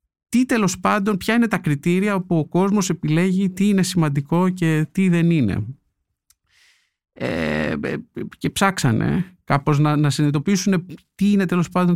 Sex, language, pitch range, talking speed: male, Greek, 135-185 Hz, 145 wpm